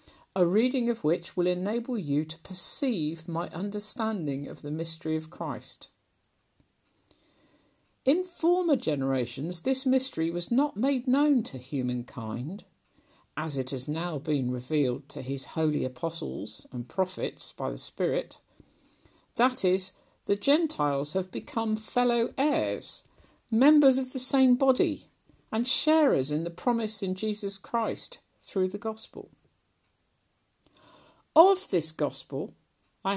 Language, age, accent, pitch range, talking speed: English, 50-69, British, 160-235 Hz, 125 wpm